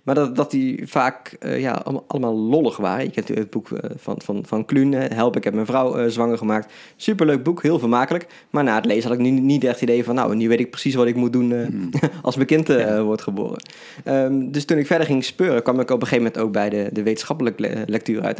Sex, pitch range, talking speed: male, 110-130 Hz, 260 wpm